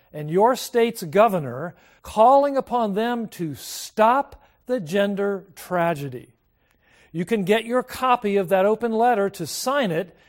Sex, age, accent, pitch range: male, 50-69, American, 175-230 Hz